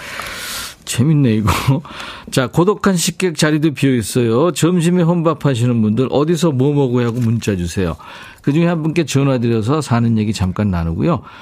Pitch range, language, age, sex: 100-155 Hz, Korean, 50-69, male